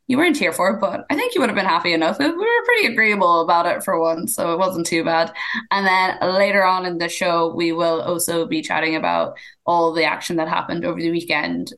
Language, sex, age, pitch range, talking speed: English, female, 20-39, 165-185 Hz, 245 wpm